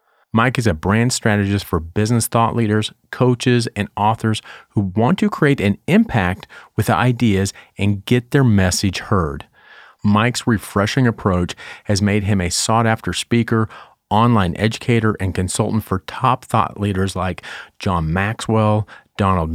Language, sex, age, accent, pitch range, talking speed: English, male, 40-59, American, 95-120 Hz, 145 wpm